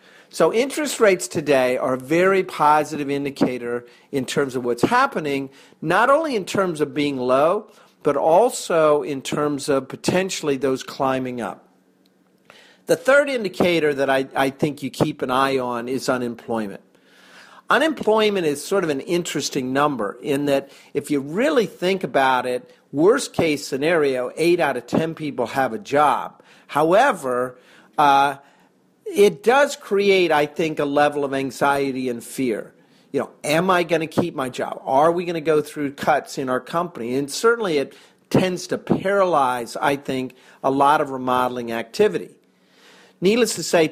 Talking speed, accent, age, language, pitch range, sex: 160 wpm, American, 50-69, English, 130-170 Hz, male